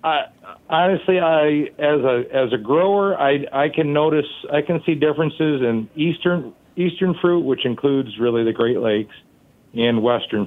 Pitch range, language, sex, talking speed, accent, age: 105-130 Hz, English, male, 160 wpm, American, 50-69